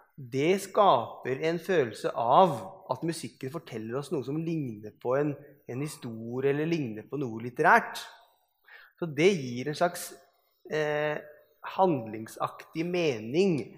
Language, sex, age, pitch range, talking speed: English, male, 20-39, 135-185 Hz, 120 wpm